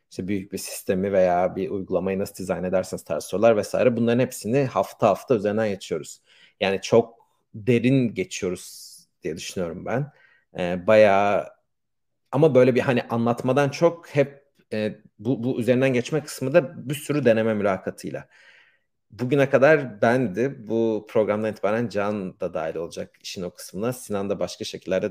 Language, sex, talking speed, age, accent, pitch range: Turkish, male, 150 wpm, 40-59, native, 105-130 Hz